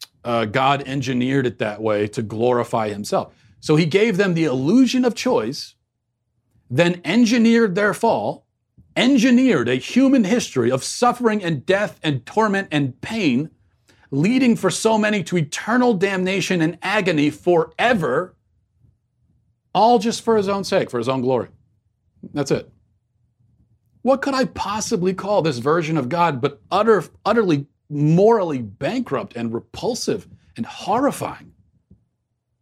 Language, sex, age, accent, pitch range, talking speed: English, male, 40-59, American, 115-185 Hz, 135 wpm